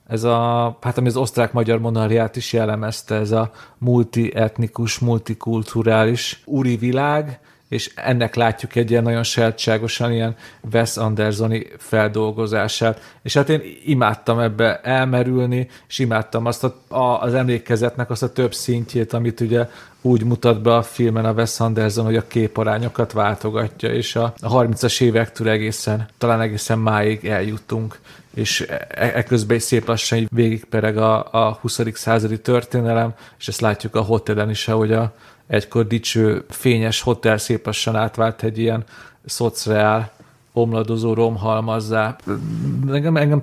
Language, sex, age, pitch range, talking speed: Hungarian, male, 40-59, 110-120 Hz, 130 wpm